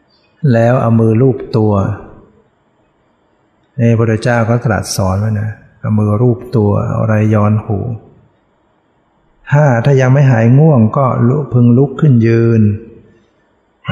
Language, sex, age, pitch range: Thai, male, 60-79, 110-130 Hz